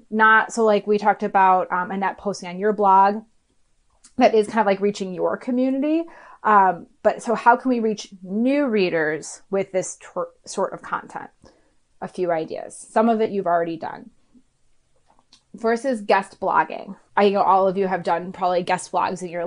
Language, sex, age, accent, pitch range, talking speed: English, female, 30-49, American, 190-235 Hz, 180 wpm